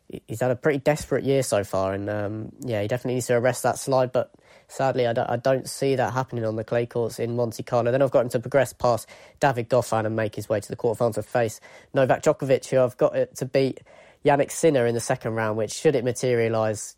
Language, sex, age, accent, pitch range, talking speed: English, female, 20-39, British, 110-130 Hz, 245 wpm